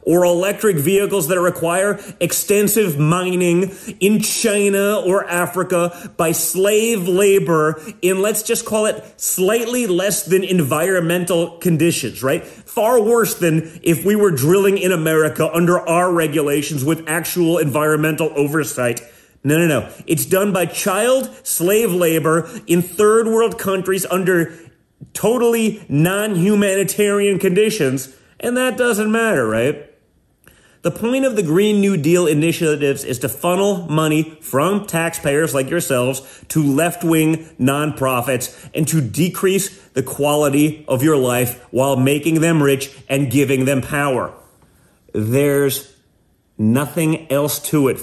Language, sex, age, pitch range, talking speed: English, male, 30-49, 140-195 Hz, 130 wpm